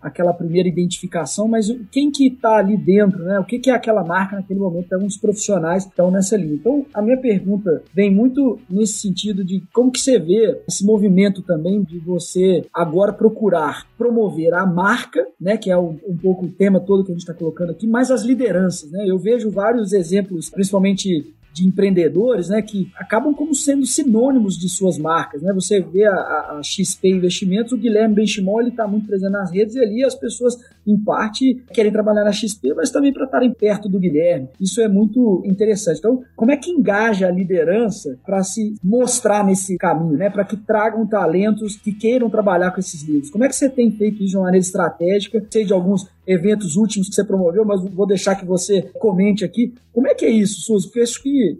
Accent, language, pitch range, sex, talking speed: Brazilian, Portuguese, 185-225 Hz, male, 205 wpm